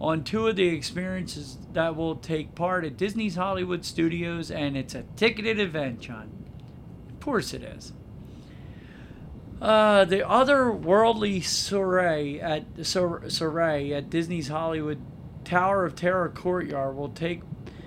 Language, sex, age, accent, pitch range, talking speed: English, male, 40-59, American, 150-185 Hz, 130 wpm